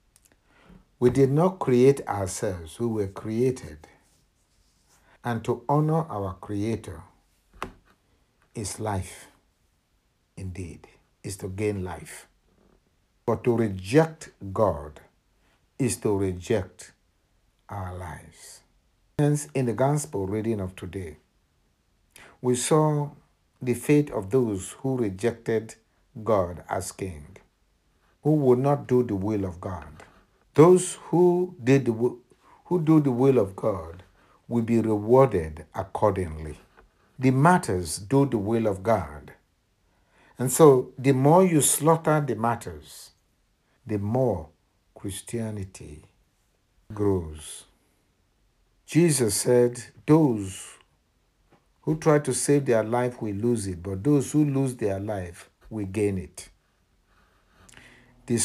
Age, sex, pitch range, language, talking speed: 60-79, male, 95-130 Hz, English, 110 wpm